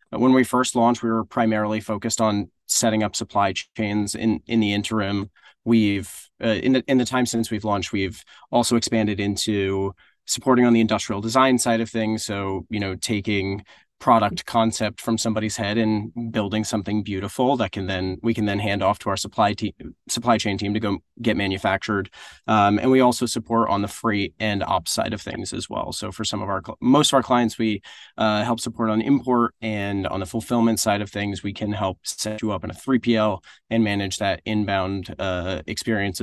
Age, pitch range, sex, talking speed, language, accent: 30-49, 100-115 Hz, male, 205 wpm, English, American